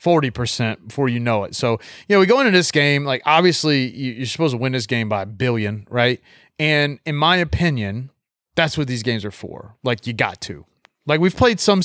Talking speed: 215 wpm